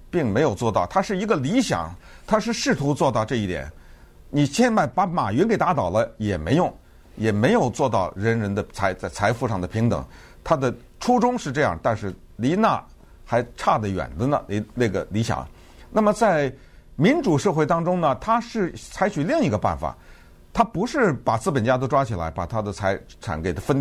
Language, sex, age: Chinese, male, 50-69